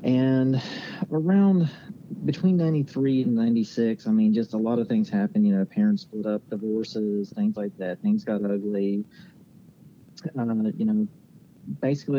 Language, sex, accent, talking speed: English, male, American, 150 wpm